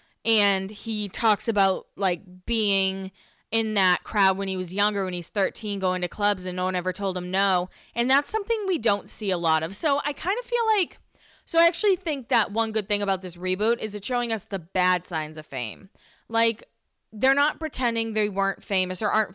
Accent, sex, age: American, female, 20-39